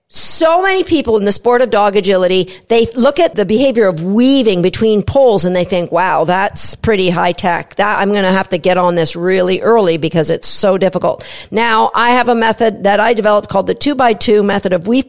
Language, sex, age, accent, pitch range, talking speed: English, female, 50-69, American, 200-280 Hz, 225 wpm